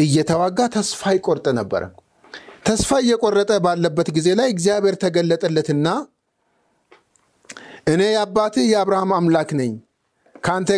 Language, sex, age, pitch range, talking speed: Amharic, male, 50-69, 155-215 Hz, 95 wpm